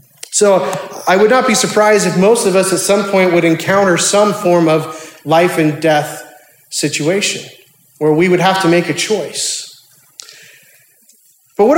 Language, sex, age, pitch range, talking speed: English, male, 30-49, 145-195 Hz, 165 wpm